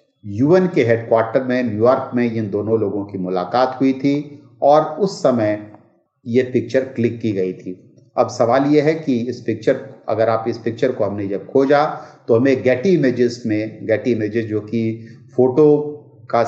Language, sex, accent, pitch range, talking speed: Hindi, male, native, 105-130 Hz, 180 wpm